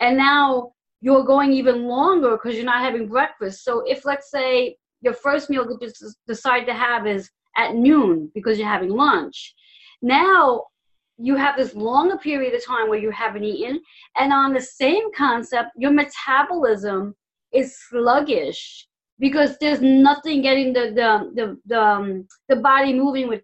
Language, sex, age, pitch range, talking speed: English, female, 30-49, 230-285 Hz, 160 wpm